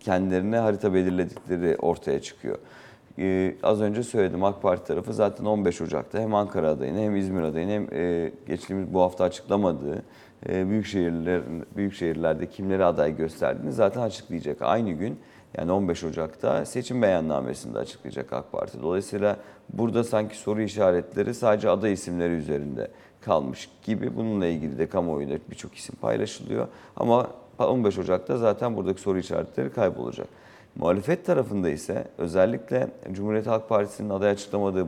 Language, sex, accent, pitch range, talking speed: Turkish, male, native, 85-105 Hz, 135 wpm